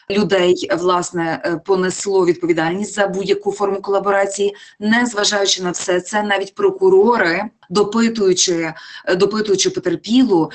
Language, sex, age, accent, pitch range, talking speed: Ukrainian, female, 20-39, native, 190-230 Hz, 100 wpm